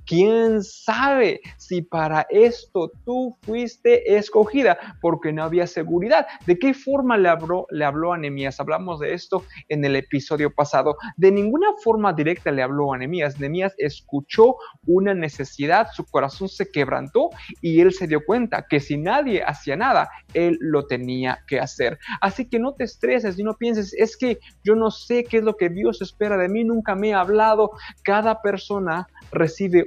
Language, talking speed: Spanish, 175 wpm